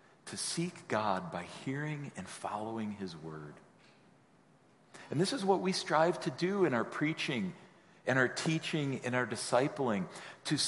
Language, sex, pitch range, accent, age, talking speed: English, male, 110-165 Hz, American, 50-69, 150 wpm